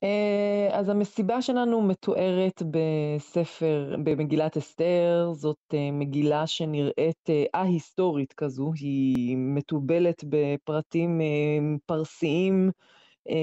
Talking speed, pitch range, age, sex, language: 70 wpm, 155-190 Hz, 20-39, female, Hebrew